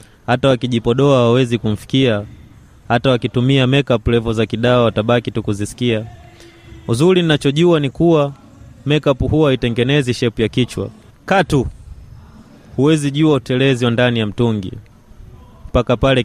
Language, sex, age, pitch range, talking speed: Swahili, male, 20-39, 110-130 Hz, 120 wpm